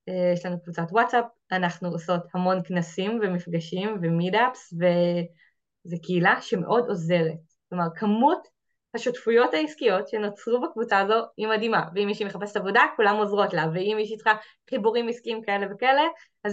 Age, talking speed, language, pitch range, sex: 20-39, 140 wpm, Hebrew, 175-230 Hz, female